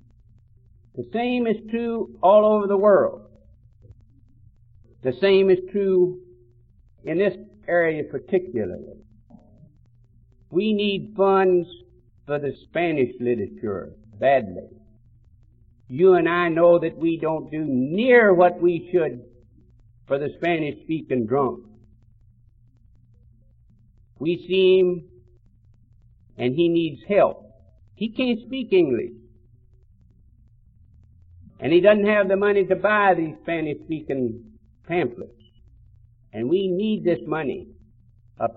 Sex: male